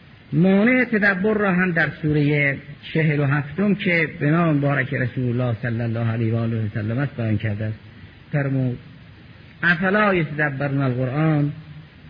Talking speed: 130 wpm